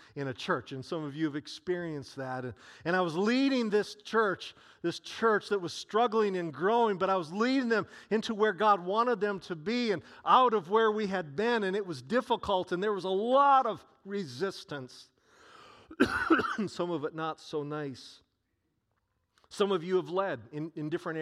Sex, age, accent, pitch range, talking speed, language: male, 50-69, American, 145-210 Hz, 190 wpm, English